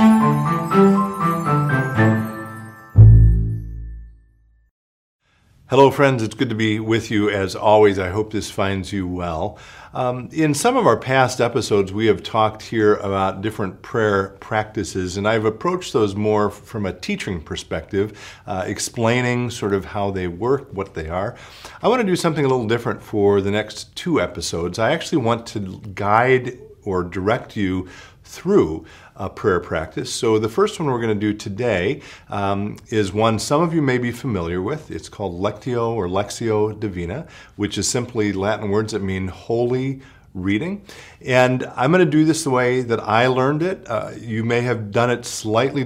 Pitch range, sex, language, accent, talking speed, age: 100-130 Hz, male, English, American, 165 wpm, 50-69